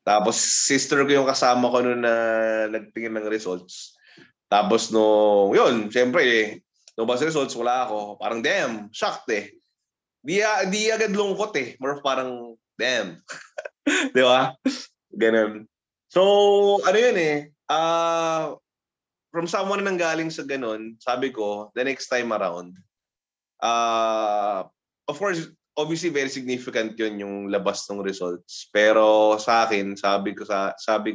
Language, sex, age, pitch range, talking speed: Filipino, male, 20-39, 110-160 Hz, 135 wpm